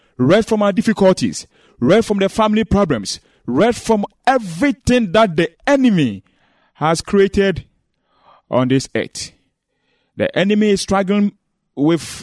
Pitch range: 140-205 Hz